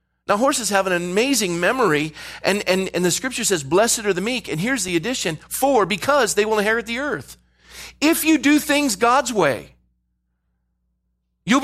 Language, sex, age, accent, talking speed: English, male, 40-59, American, 175 wpm